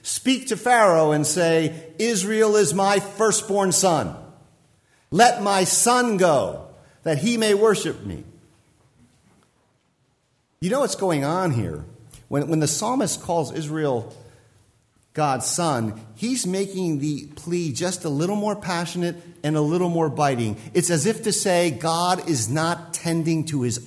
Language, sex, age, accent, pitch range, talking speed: English, male, 50-69, American, 140-200 Hz, 145 wpm